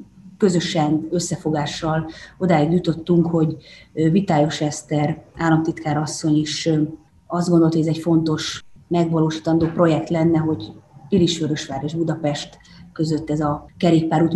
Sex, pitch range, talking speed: female, 155-175 Hz, 110 wpm